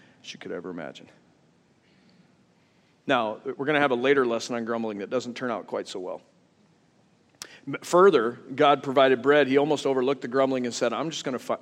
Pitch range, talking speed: 130-175 Hz, 195 wpm